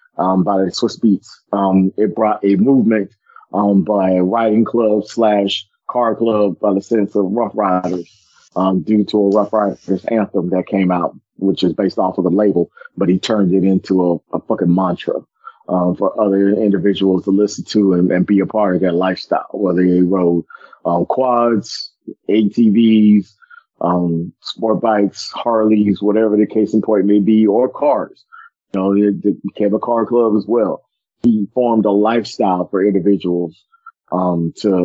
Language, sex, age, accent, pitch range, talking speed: English, male, 30-49, American, 95-110 Hz, 175 wpm